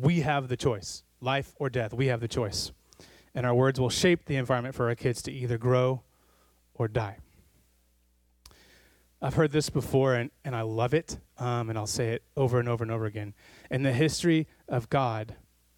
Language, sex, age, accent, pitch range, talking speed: English, male, 30-49, American, 95-135 Hz, 195 wpm